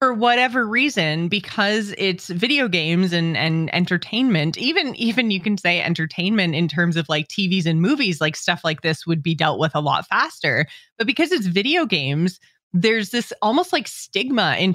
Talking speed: 185 wpm